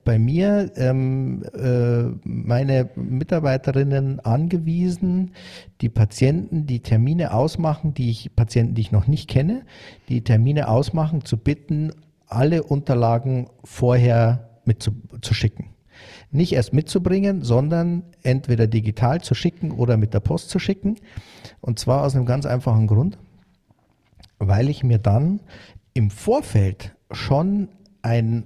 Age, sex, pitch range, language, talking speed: 50-69, male, 115-150 Hz, German, 125 wpm